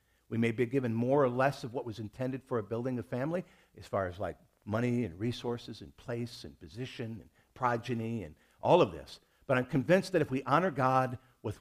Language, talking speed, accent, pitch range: English, 215 wpm, American, 105-135 Hz